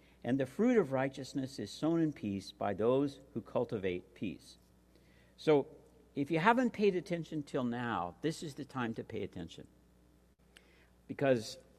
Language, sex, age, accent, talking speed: English, male, 60-79, American, 155 wpm